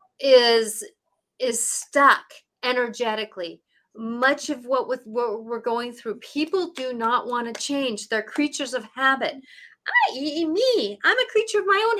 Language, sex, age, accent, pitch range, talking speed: English, female, 40-59, American, 245-320 Hz, 145 wpm